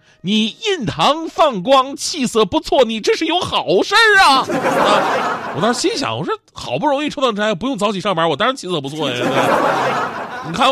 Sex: male